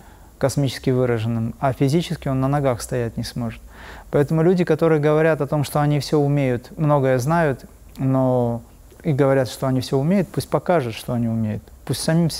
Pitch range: 125-160 Hz